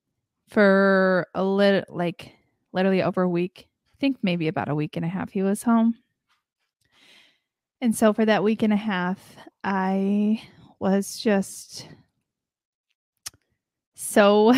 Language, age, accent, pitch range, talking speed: English, 20-39, American, 180-215 Hz, 130 wpm